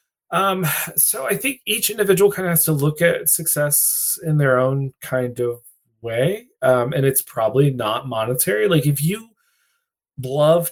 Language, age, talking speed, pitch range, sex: English, 20-39, 160 wpm, 120-165 Hz, male